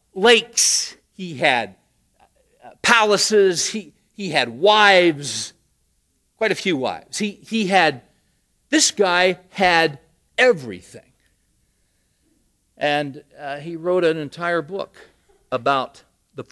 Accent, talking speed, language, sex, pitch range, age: American, 105 wpm, English, male, 140-200 Hz, 50-69